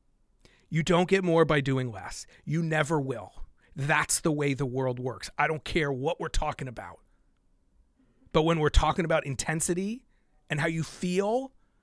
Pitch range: 135-185 Hz